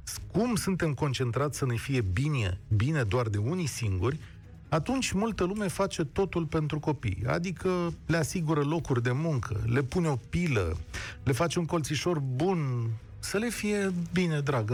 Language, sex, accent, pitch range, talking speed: Romanian, male, native, 105-170 Hz, 160 wpm